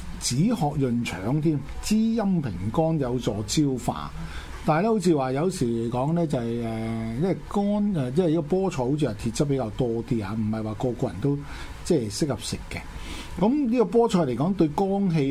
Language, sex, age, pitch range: Chinese, male, 50-69, 110-165 Hz